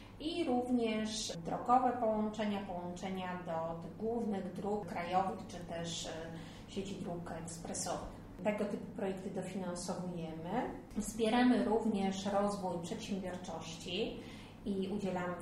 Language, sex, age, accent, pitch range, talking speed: Polish, female, 30-49, native, 180-210 Hz, 95 wpm